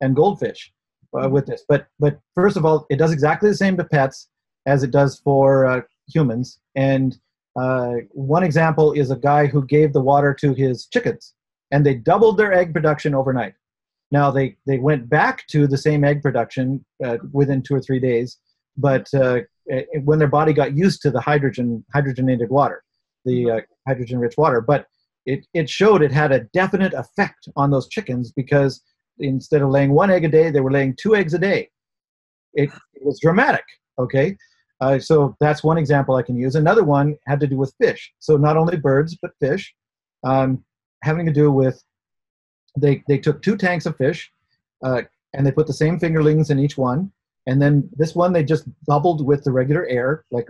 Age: 40-59